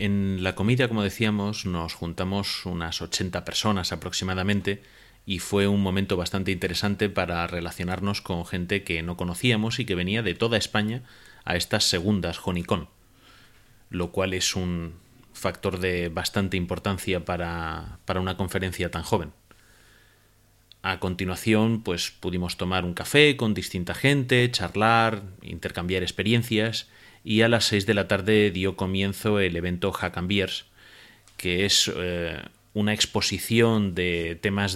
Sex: male